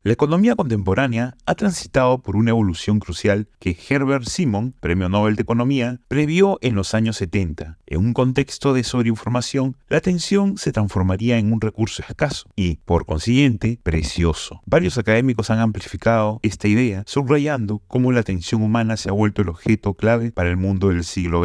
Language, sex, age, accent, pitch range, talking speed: Spanish, male, 30-49, Argentinian, 95-130 Hz, 170 wpm